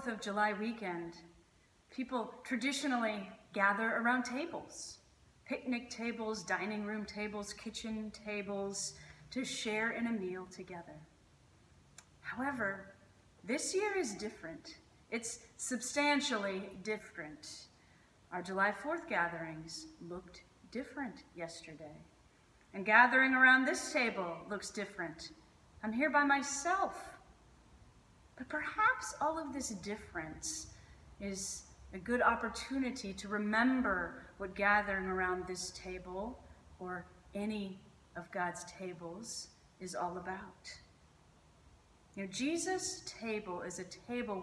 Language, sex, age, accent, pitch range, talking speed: English, female, 30-49, American, 190-270 Hz, 105 wpm